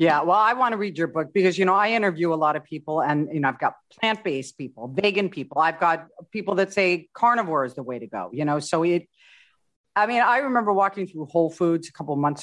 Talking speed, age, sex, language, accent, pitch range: 255 wpm, 40-59, female, English, American, 155-190 Hz